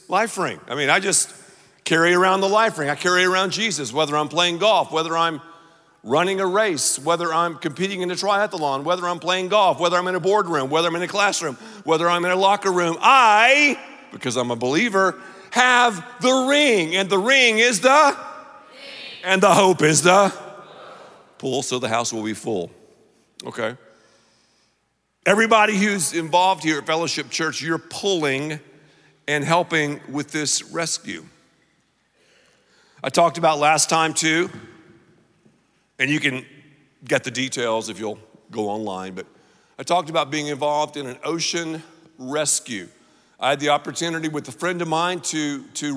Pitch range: 145-195 Hz